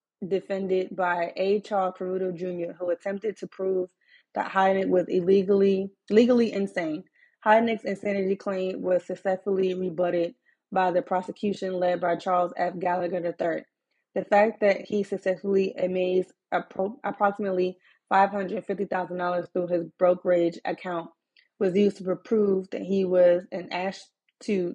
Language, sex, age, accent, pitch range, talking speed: English, female, 20-39, American, 180-200 Hz, 130 wpm